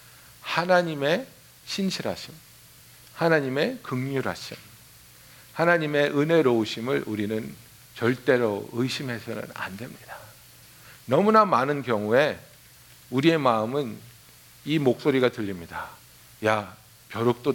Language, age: Korean, 60-79